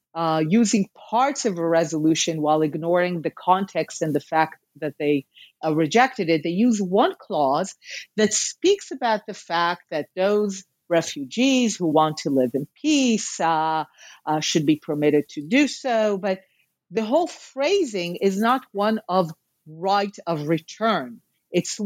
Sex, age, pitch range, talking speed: female, 40-59, 170-255 Hz, 155 wpm